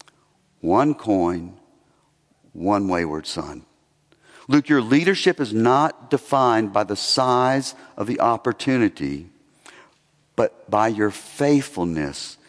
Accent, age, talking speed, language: American, 50-69, 100 wpm, English